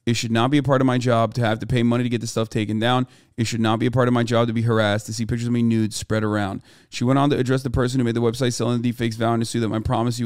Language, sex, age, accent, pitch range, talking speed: English, male, 30-49, American, 115-135 Hz, 355 wpm